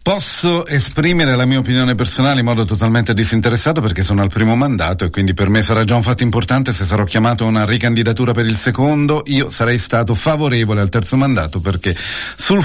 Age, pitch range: 50-69, 100-125 Hz